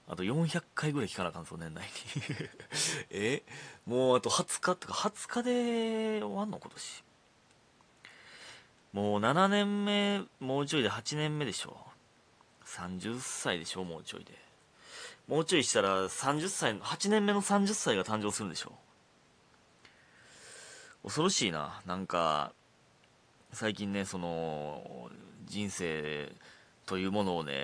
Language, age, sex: Japanese, 30-49, male